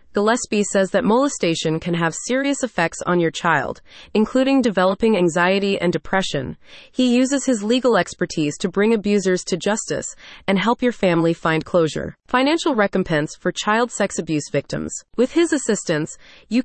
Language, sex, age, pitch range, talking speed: English, female, 30-49, 170-230 Hz, 155 wpm